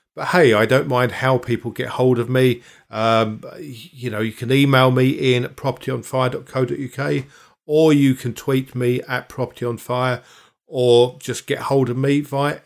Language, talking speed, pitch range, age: English, 160 wpm, 125-155 Hz, 50-69